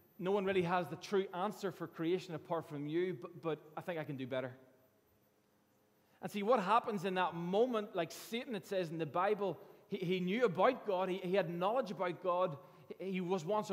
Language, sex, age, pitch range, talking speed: English, male, 20-39, 165-200 Hz, 210 wpm